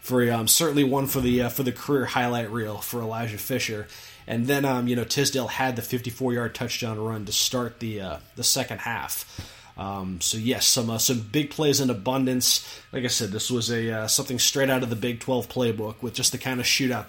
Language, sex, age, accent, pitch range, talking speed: English, male, 20-39, American, 115-135 Hz, 230 wpm